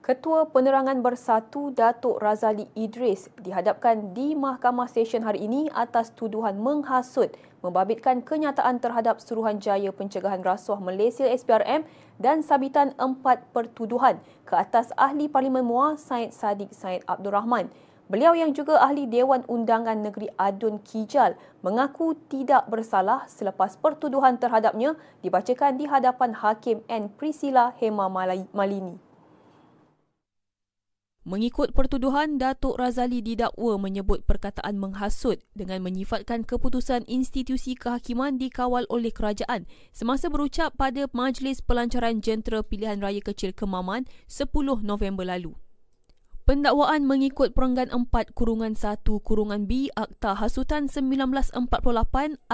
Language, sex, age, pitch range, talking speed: Malay, female, 20-39, 215-265 Hz, 115 wpm